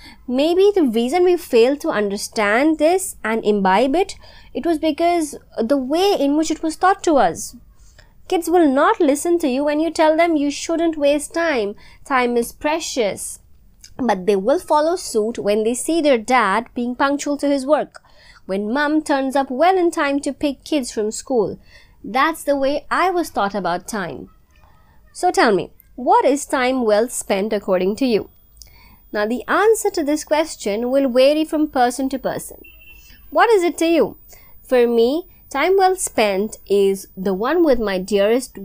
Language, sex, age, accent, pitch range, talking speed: English, female, 20-39, Indian, 215-315 Hz, 175 wpm